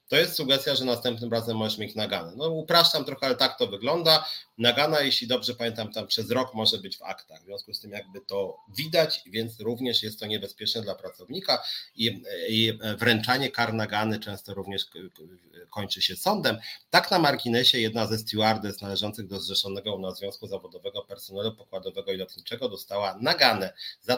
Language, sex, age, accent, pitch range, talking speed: Polish, male, 30-49, native, 100-125 Hz, 170 wpm